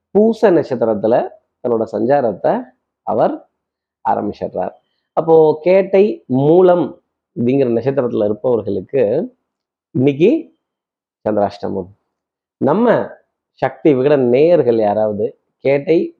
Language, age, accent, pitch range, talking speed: Tamil, 30-49, native, 125-175 Hz, 75 wpm